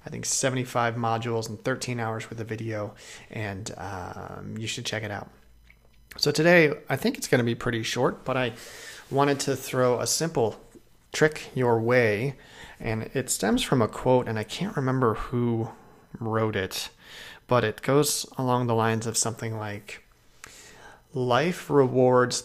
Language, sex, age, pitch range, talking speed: English, male, 30-49, 110-135 Hz, 165 wpm